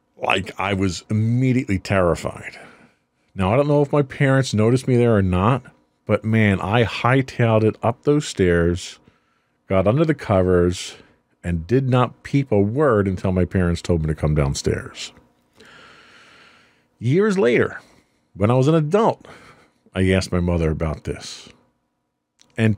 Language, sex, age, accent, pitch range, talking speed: English, male, 40-59, American, 90-125 Hz, 150 wpm